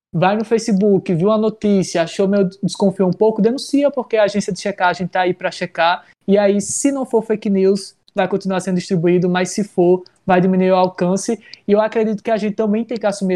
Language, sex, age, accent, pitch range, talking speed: Portuguese, male, 20-39, Brazilian, 180-205 Hz, 220 wpm